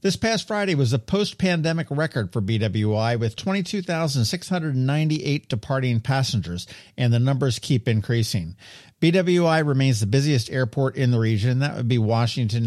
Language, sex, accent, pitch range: English, male, American, 110-150 Hz